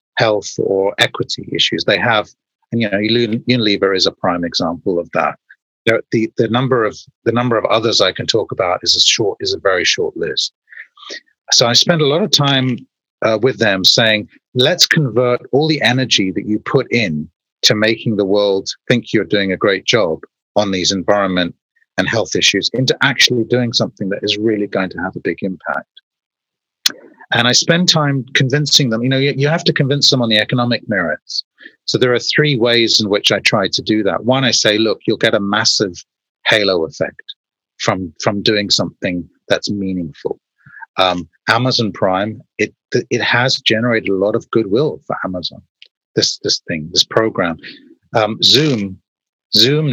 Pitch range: 100-130 Hz